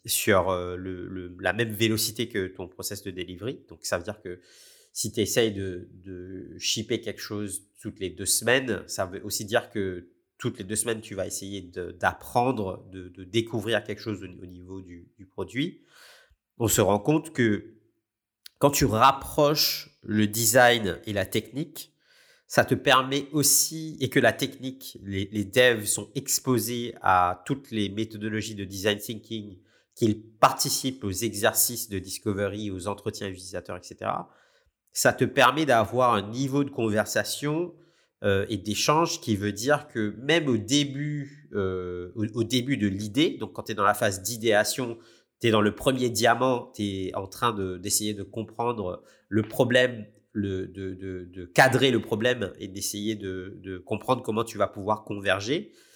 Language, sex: French, male